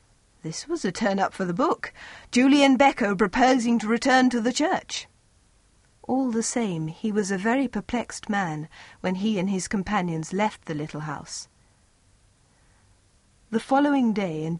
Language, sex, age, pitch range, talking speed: English, female, 40-59, 155-230 Hz, 150 wpm